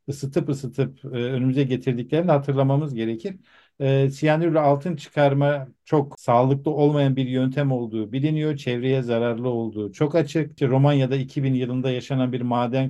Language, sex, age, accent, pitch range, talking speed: Turkish, male, 50-69, native, 125-150 Hz, 135 wpm